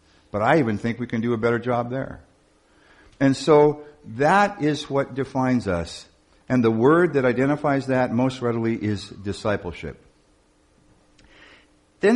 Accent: American